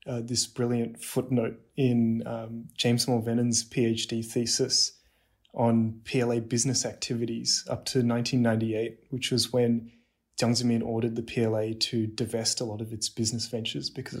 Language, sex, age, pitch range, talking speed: English, male, 20-39, 115-125 Hz, 145 wpm